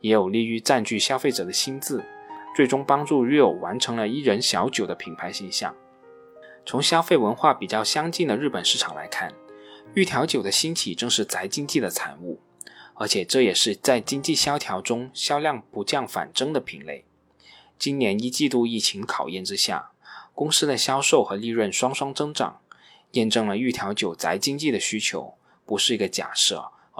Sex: male